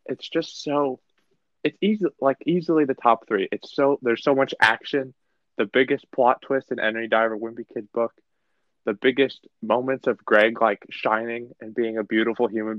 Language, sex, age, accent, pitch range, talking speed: English, male, 20-39, American, 115-145 Hz, 180 wpm